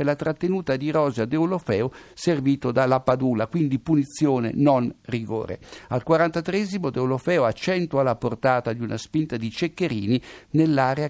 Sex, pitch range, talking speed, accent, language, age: male, 125-175 Hz, 140 wpm, native, Italian, 60-79